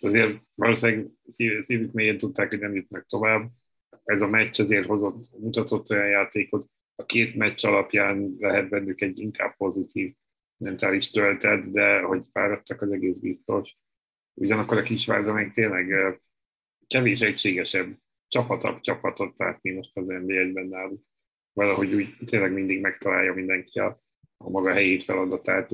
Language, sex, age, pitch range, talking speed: Hungarian, male, 30-49, 100-110 Hz, 140 wpm